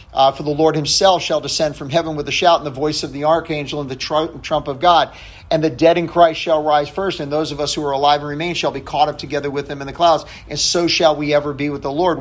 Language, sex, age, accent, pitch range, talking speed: English, male, 50-69, American, 140-170 Hz, 295 wpm